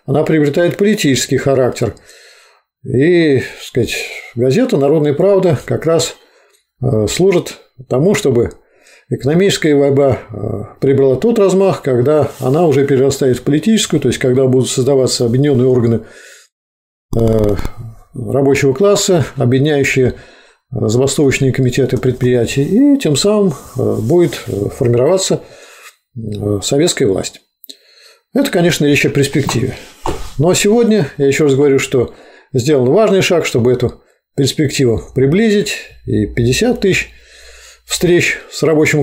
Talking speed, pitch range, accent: 110 wpm, 125-170 Hz, native